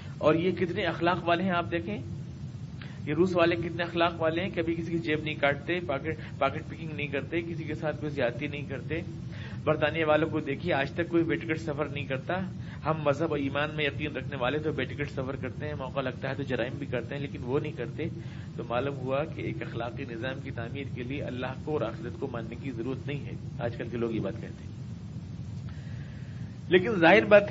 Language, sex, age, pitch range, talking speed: Urdu, male, 50-69, 140-170 Hz, 215 wpm